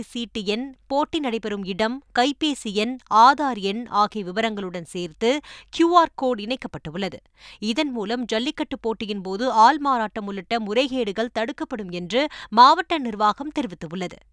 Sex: female